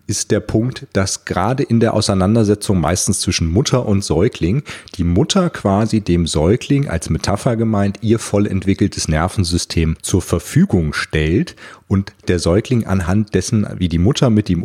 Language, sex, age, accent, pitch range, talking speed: German, male, 40-59, German, 85-110 Hz, 155 wpm